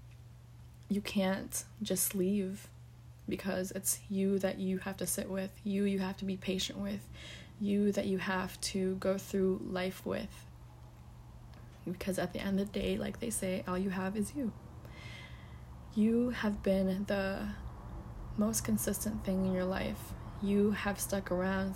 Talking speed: 160 wpm